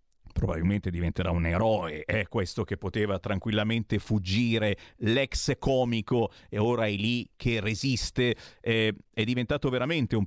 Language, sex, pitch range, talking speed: Italian, male, 100-125 Hz, 135 wpm